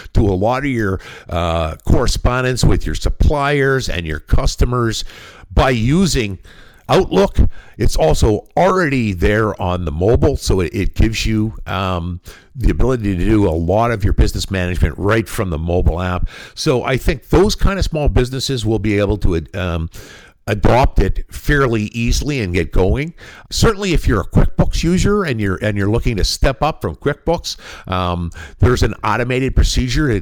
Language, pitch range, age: English, 90-120 Hz, 50-69